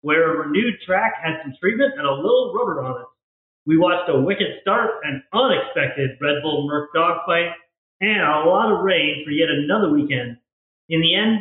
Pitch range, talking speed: 150-215 Hz, 190 wpm